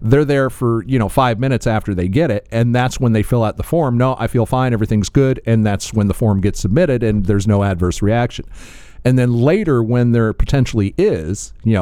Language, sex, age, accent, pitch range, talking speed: English, male, 40-59, American, 100-130 Hz, 230 wpm